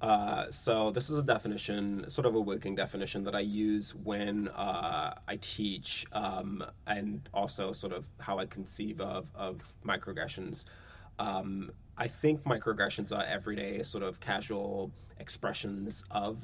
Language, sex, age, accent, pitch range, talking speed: English, male, 20-39, American, 95-110 Hz, 145 wpm